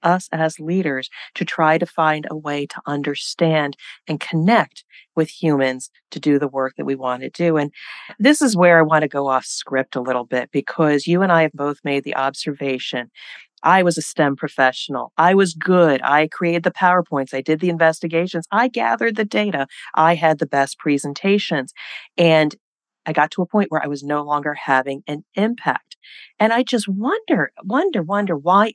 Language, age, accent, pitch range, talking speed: English, 40-59, American, 145-195 Hz, 190 wpm